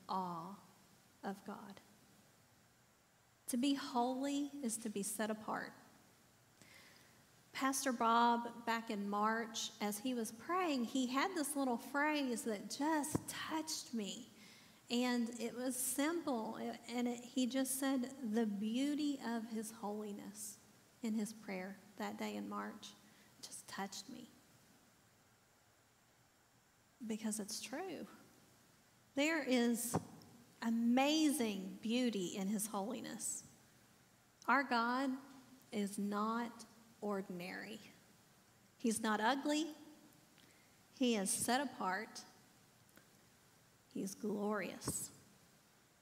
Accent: American